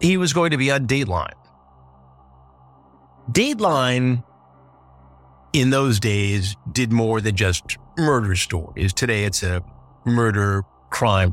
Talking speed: 110 wpm